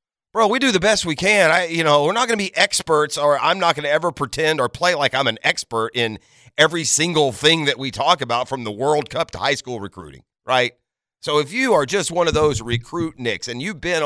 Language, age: English, 40-59